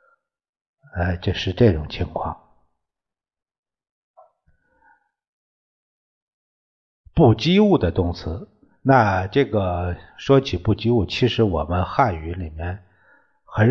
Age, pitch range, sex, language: 50-69, 85-110 Hz, male, Chinese